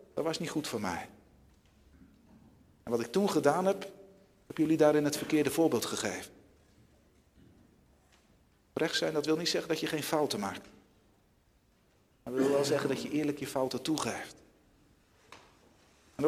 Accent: Dutch